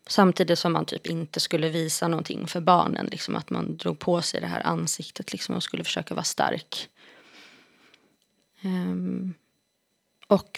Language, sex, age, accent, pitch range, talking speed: Swedish, female, 20-39, native, 165-195 Hz, 155 wpm